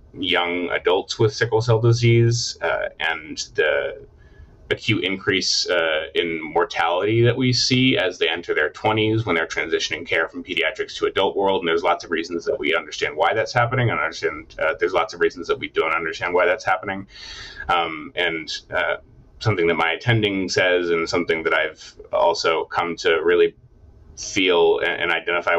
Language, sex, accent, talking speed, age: English, male, American, 175 wpm, 30-49